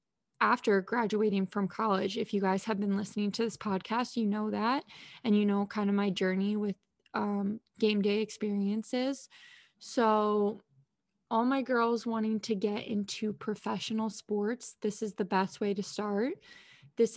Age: 20-39